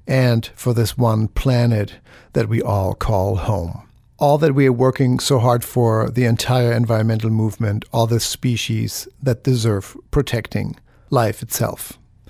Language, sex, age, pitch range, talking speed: English, male, 50-69, 115-140 Hz, 145 wpm